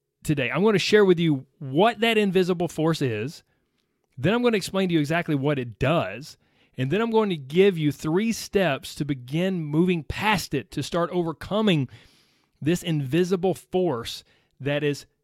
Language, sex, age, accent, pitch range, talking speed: English, male, 30-49, American, 135-200 Hz, 175 wpm